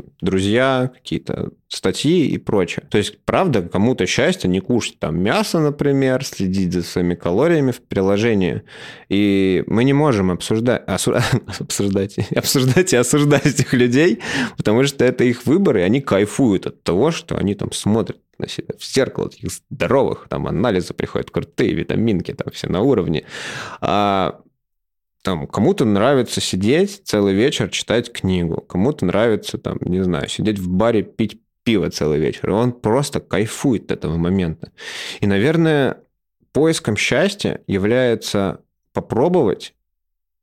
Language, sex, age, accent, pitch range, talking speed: Russian, male, 20-39, native, 90-130 Hz, 140 wpm